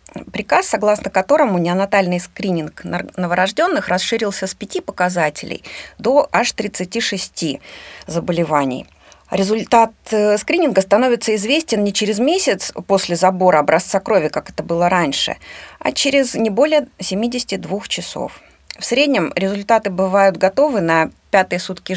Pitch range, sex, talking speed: 180-235 Hz, female, 115 wpm